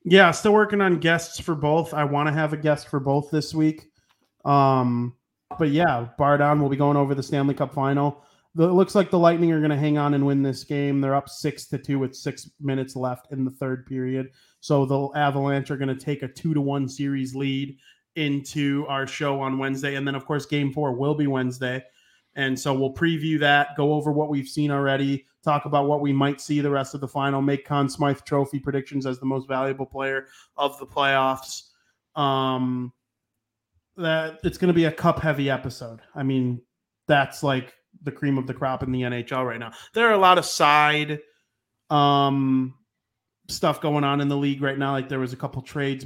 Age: 30-49